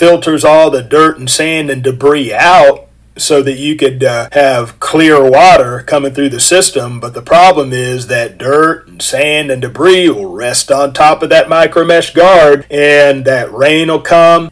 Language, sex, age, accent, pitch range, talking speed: English, male, 40-59, American, 130-155 Hz, 185 wpm